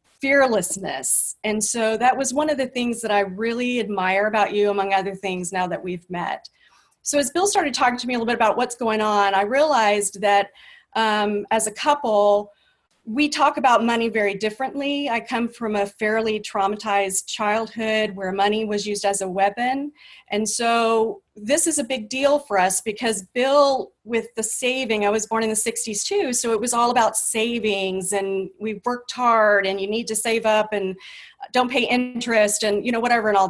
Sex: female